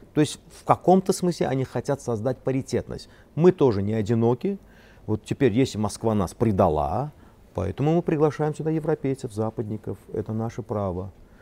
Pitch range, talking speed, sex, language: 100-130 Hz, 145 wpm, male, Russian